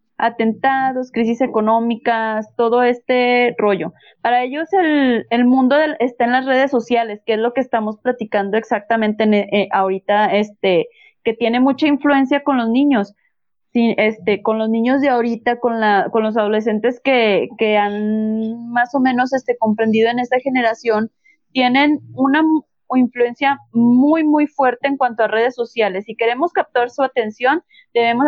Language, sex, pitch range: Spanish, female, 225-270 Hz